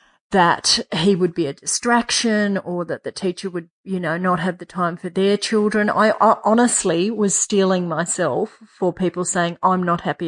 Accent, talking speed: Australian, 180 wpm